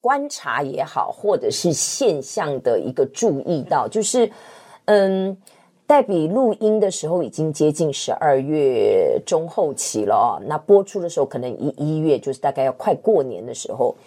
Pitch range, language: 155-235 Hz, Chinese